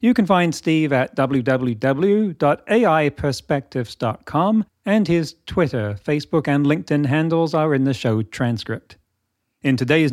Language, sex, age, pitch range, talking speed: English, male, 40-59, 125-170 Hz, 120 wpm